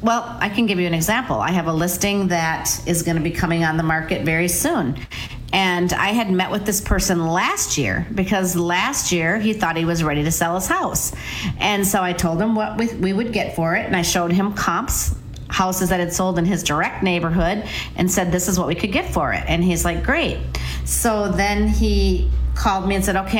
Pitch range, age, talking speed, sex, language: 165-200 Hz, 40-59, 230 wpm, female, English